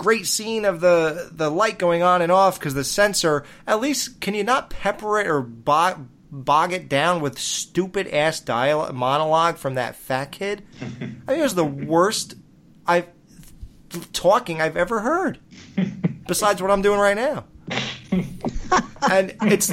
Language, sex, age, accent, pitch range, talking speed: English, male, 30-49, American, 170-230 Hz, 165 wpm